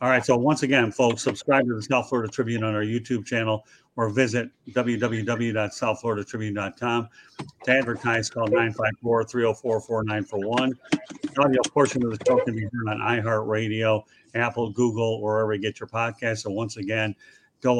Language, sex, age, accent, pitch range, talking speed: English, male, 50-69, American, 110-125 Hz, 155 wpm